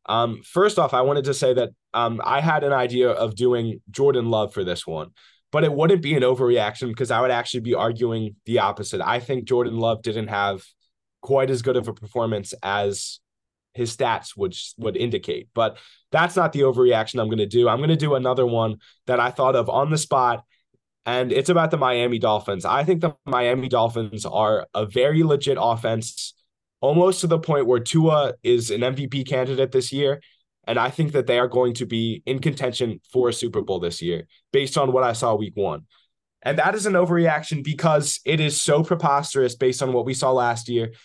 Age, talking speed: 20-39, 210 wpm